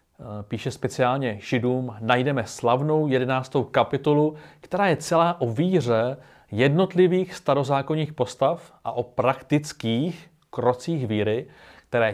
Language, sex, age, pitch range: Czech, male, 40-59, 110-150 Hz